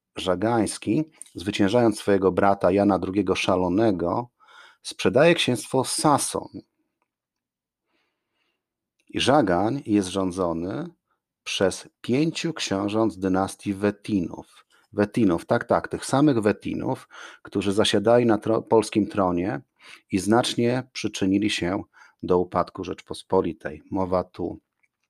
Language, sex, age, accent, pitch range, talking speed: Polish, male, 40-59, native, 95-120 Hz, 100 wpm